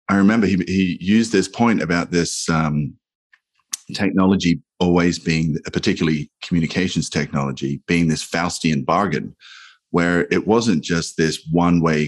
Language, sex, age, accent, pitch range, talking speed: English, male, 30-49, Australian, 75-85 Hz, 130 wpm